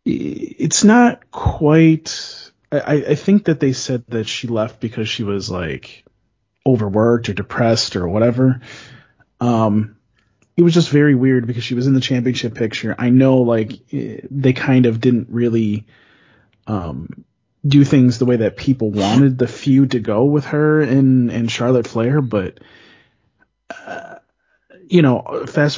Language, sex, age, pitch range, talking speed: English, male, 30-49, 110-135 Hz, 150 wpm